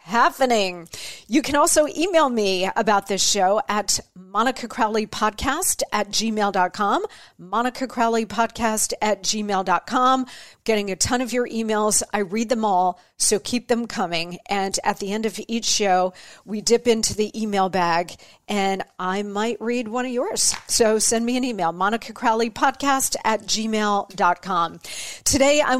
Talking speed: 145 wpm